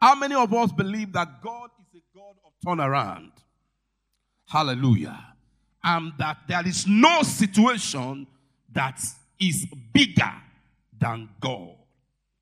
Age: 50-69